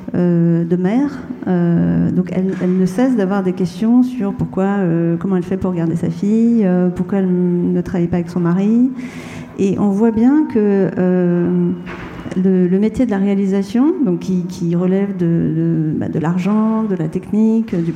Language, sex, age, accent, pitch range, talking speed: French, female, 40-59, French, 175-220 Hz, 185 wpm